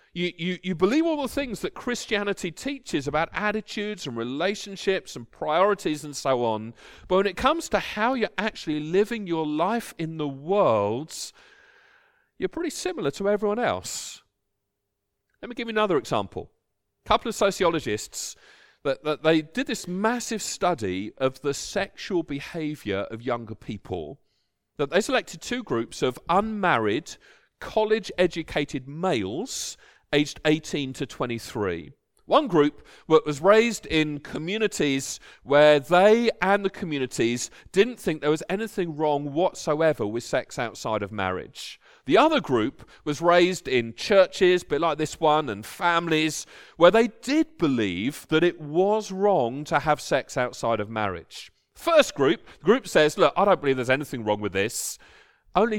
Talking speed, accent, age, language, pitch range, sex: 155 wpm, British, 40-59, English, 140-205 Hz, male